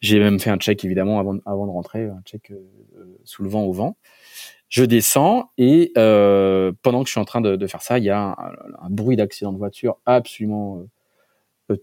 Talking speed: 230 wpm